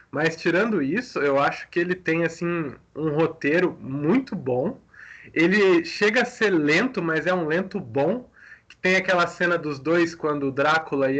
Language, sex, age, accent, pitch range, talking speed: Portuguese, male, 20-39, Brazilian, 135-175 Hz, 170 wpm